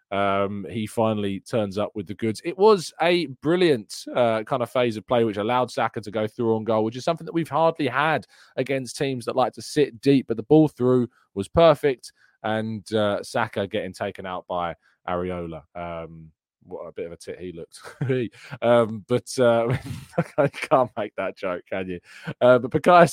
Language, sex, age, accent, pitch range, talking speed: English, male, 20-39, British, 105-145 Hz, 195 wpm